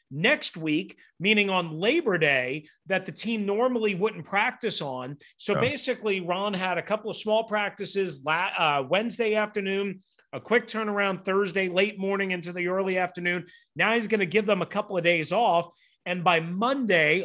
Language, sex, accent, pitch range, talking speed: English, male, American, 145-200 Hz, 170 wpm